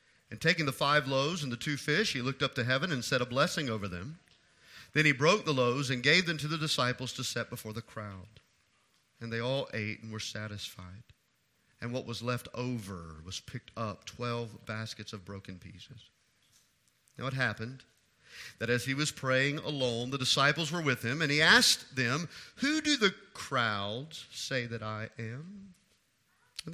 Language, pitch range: English, 120-175 Hz